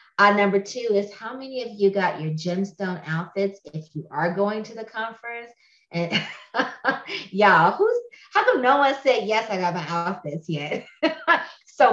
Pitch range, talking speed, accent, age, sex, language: 165-210 Hz, 165 wpm, American, 30-49, female, English